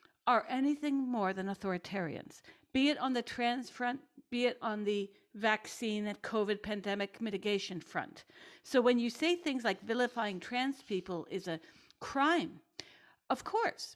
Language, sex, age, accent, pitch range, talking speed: English, female, 50-69, American, 205-280 Hz, 150 wpm